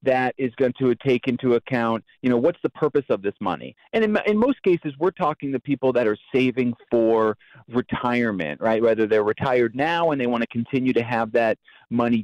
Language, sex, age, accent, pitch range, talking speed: English, male, 40-59, American, 120-145 Hz, 210 wpm